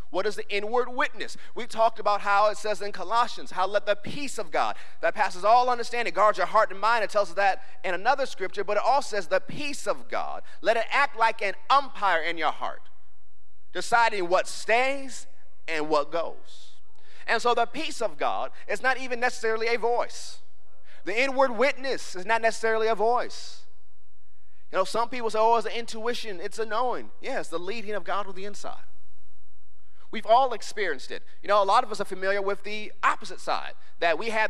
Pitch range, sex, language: 170-235 Hz, male, English